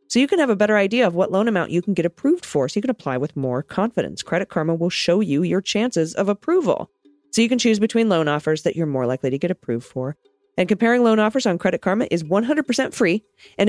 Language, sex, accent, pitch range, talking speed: English, female, American, 150-215 Hz, 255 wpm